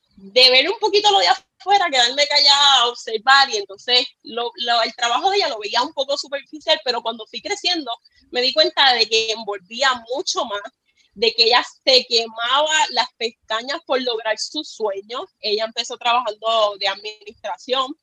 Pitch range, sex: 225-315 Hz, female